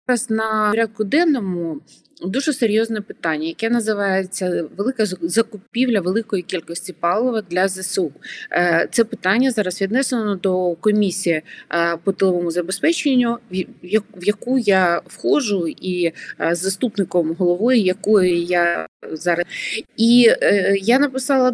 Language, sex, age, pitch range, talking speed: Ukrainian, female, 30-49, 180-235 Hz, 105 wpm